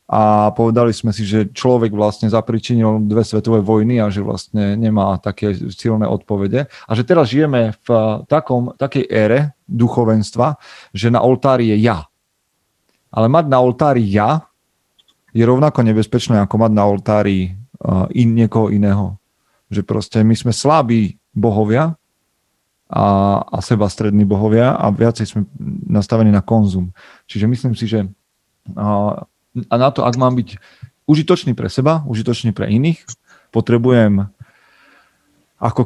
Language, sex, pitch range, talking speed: Slovak, male, 100-120 Hz, 140 wpm